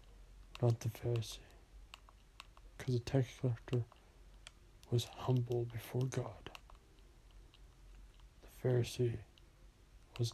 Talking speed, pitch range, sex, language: 80 wpm, 110-130 Hz, male, English